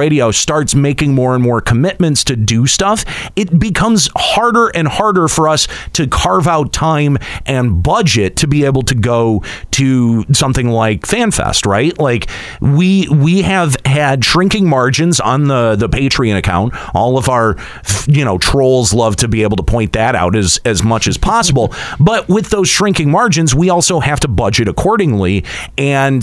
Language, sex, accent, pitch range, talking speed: English, male, American, 115-165 Hz, 175 wpm